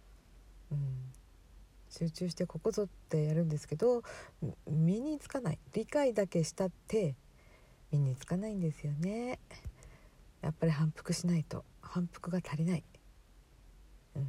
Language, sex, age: Japanese, female, 50-69